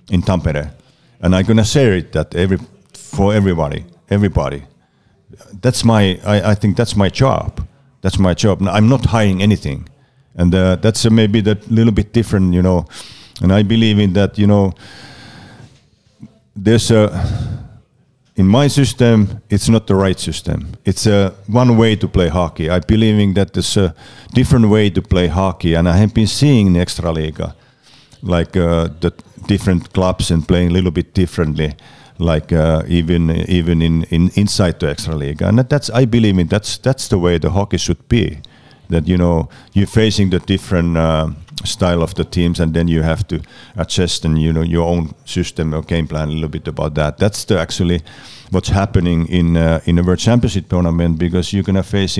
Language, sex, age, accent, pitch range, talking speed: Czech, male, 50-69, Finnish, 85-110 Hz, 190 wpm